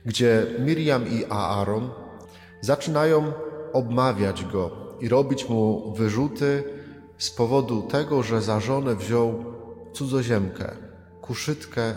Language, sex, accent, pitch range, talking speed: Polish, male, native, 105-135 Hz, 100 wpm